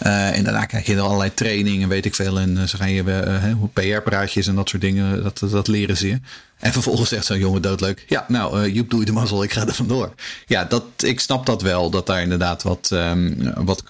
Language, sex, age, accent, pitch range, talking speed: Dutch, male, 40-59, Dutch, 95-120 Hz, 255 wpm